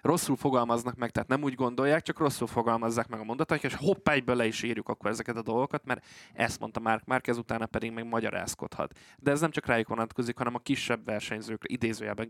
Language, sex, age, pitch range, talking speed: Hungarian, male, 20-39, 115-135 Hz, 215 wpm